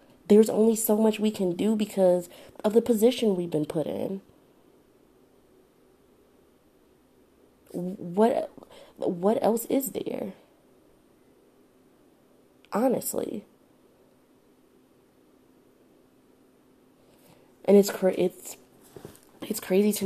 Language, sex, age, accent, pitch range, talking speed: English, female, 20-39, American, 155-180 Hz, 80 wpm